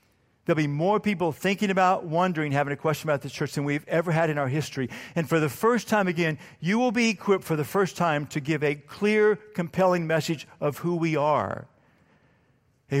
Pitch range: 140-180 Hz